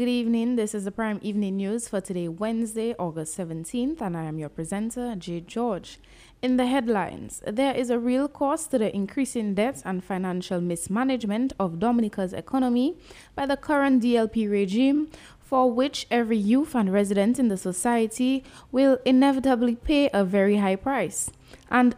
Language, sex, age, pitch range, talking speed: English, female, 20-39, 205-270 Hz, 165 wpm